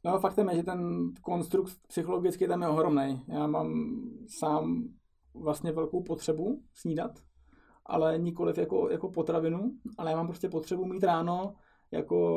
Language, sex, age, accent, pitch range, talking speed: Czech, male, 20-39, native, 150-180 Hz, 140 wpm